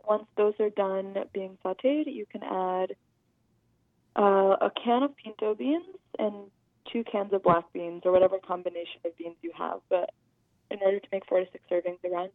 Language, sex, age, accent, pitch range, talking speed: English, female, 20-39, American, 185-220 Hz, 185 wpm